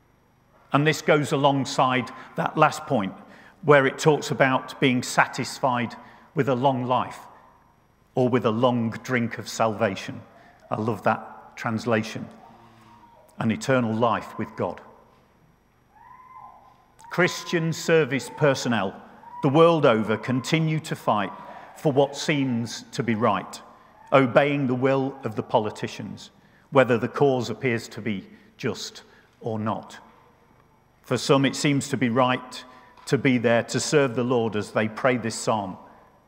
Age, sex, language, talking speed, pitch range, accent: 50-69, male, English, 135 wpm, 115-140 Hz, British